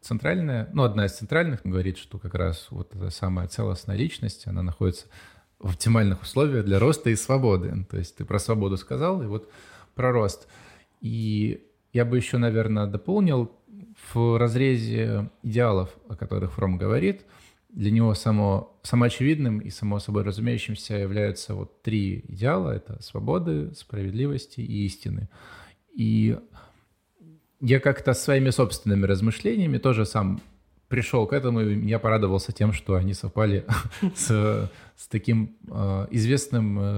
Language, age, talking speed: Russian, 20-39, 140 wpm